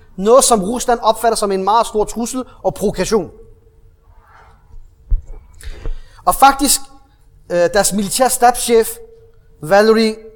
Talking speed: 95 wpm